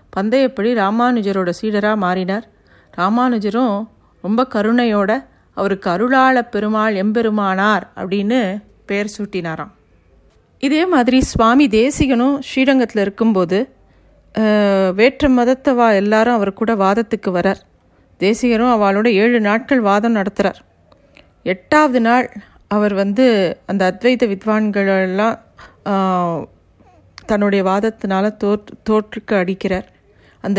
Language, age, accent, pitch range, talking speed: Tamil, 40-59, native, 195-235 Hz, 90 wpm